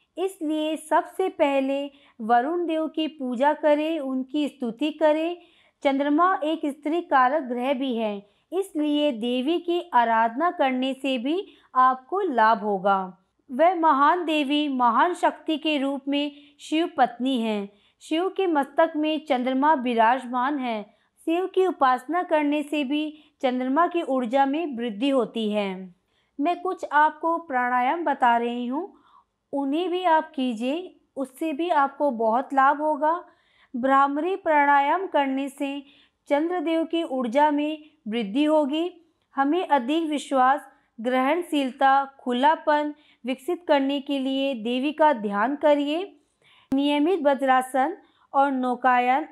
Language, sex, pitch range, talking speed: Hindi, female, 255-315 Hz, 125 wpm